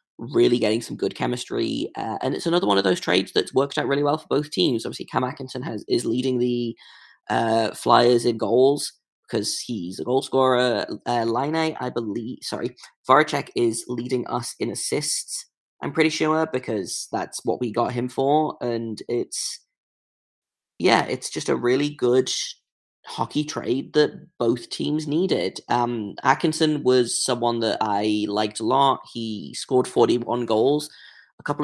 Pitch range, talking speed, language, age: 115-145 Hz, 165 wpm, English, 20-39